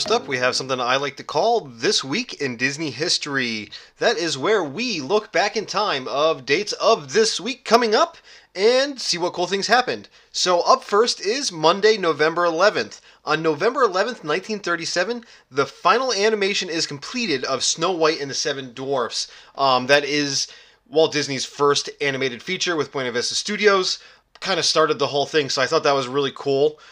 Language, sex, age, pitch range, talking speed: English, male, 20-39, 135-175 Hz, 185 wpm